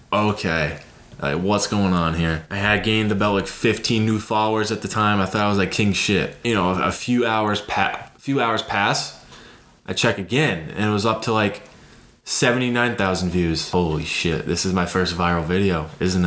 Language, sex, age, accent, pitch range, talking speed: English, male, 20-39, American, 95-120 Hz, 205 wpm